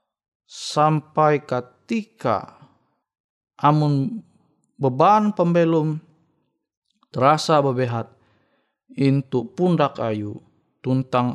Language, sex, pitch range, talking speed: Indonesian, male, 120-155 Hz, 60 wpm